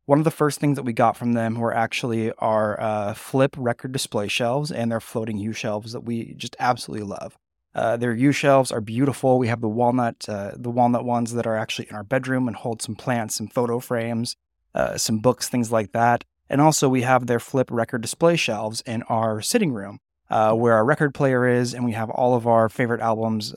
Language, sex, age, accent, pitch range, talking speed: English, male, 20-39, American, 110-130 Hz, 220 wpm